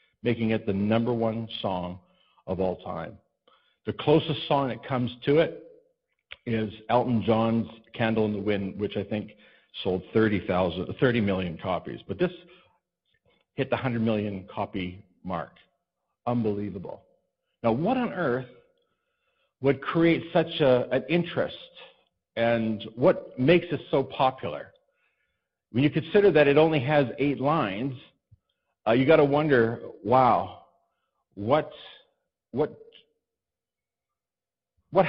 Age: 50-69